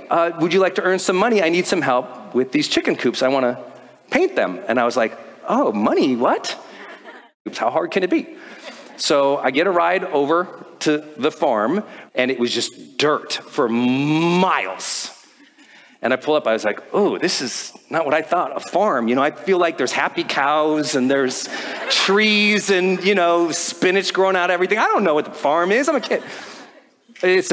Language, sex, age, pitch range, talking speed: English, male, 40-59, 135-205 Hz, 205 wpm